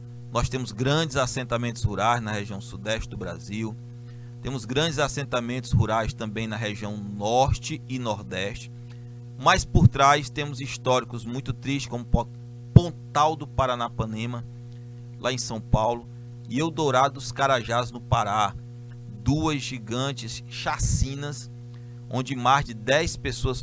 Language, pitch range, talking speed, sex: Portuguese, 120-130 Hz, 125 wpm, male